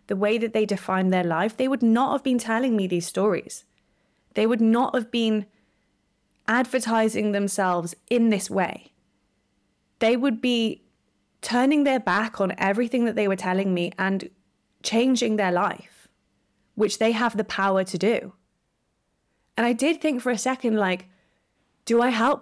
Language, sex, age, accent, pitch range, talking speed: English, female, 20-39, British, 195-240 Hz, 165 wpm